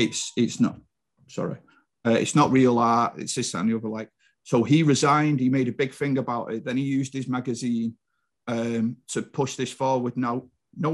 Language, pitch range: English, 115-130 Hz